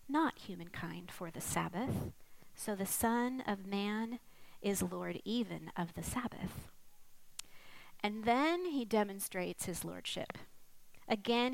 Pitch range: 185-235 Hz